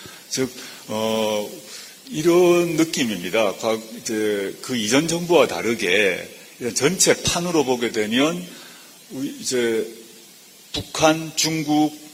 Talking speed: 80 wpm